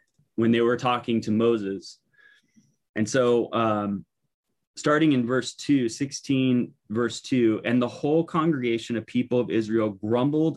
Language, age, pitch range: English, 20-39, 110-130 Hz